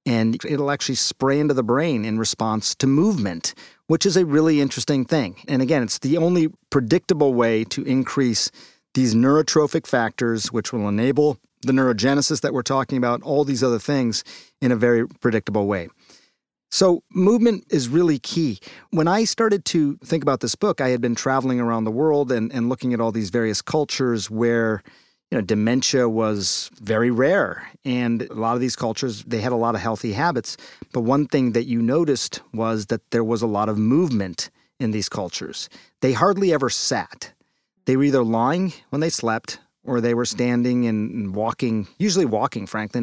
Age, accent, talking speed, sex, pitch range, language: 40-59, American, 185 wpm, male, 115-150 Hz, English